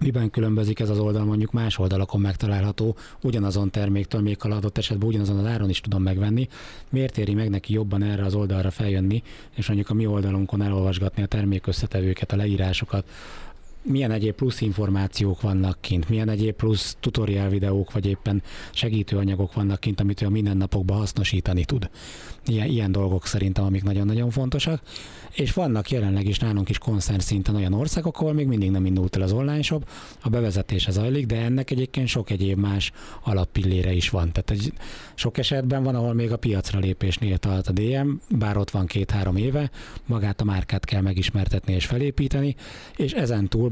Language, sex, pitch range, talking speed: Hungarian, male, 100-115 Hz, 175 wpm